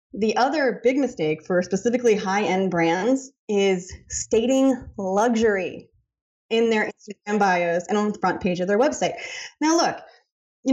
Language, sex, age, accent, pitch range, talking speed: English, female, 20-39, American, 205-280 Hz, 145 wpm